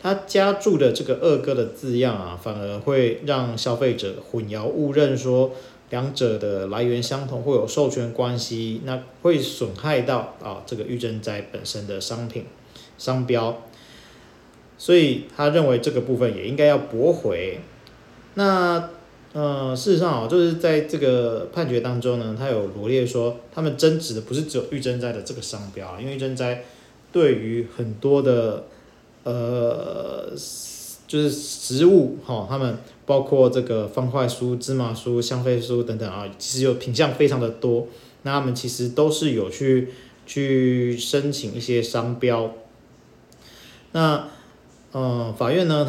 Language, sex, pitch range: Chinese, male, 120-145 Hz